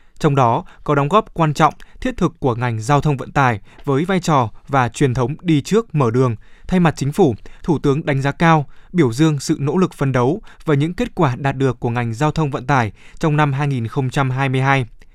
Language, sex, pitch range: Vietnamese, male, 130-160 Hz